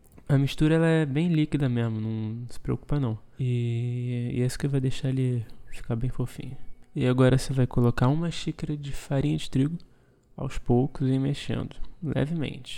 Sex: male